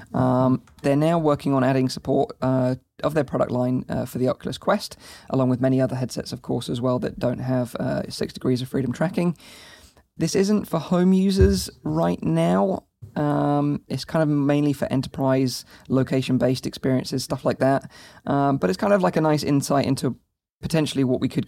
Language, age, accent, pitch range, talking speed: English, 20-39, British, 130-145 Hz, 190 wpm